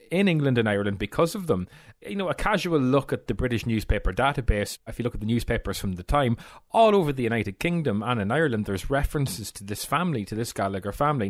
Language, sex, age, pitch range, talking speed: English, male, 30-49, 100-125 Hz, 230 wpm